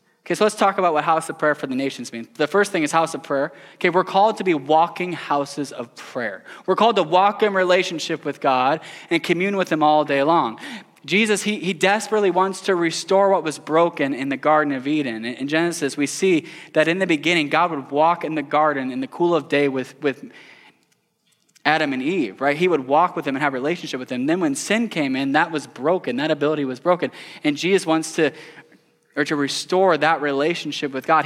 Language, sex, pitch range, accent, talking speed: English, male, 145-185 Hz, American, 225 wpm